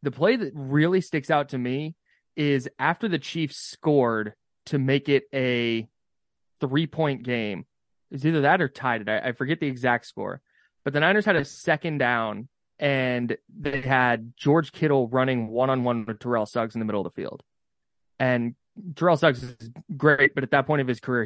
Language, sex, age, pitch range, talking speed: English, male, 20-39, 125-150 Hz, 185 wpm